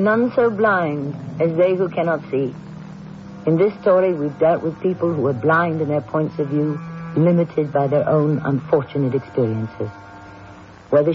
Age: 60-79